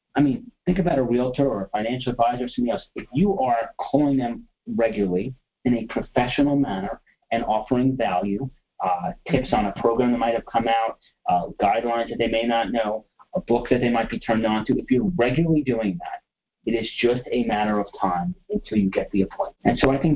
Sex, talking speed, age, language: male, 215 wpm, 40-59, English